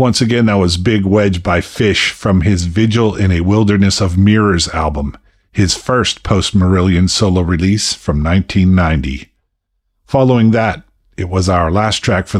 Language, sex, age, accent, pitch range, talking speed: English, male, 50-69, American, 90-105 Hz, 155 wpm